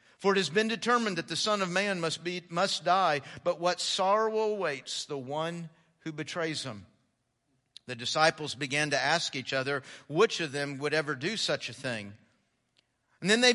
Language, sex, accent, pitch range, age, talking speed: English, male, American, 150-210 Hz, 50-69, 185 wpm